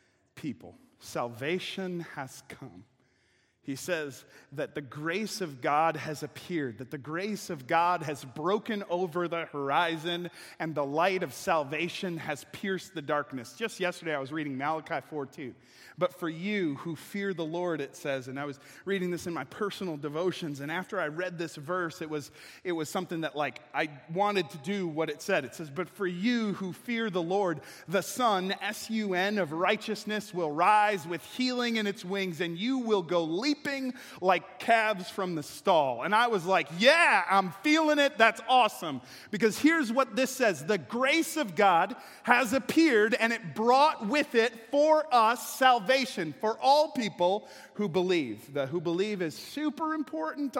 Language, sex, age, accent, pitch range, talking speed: English, male, 30-49, American, 155-215 Hz, 175 wpm